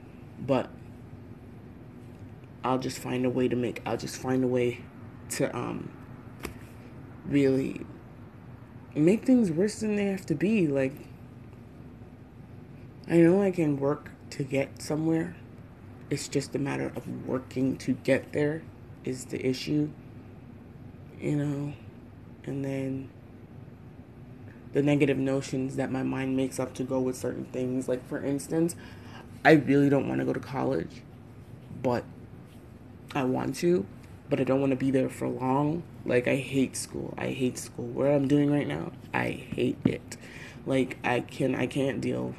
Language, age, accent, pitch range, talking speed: English, 20-39, American, 120-135 Hz, 150 wpm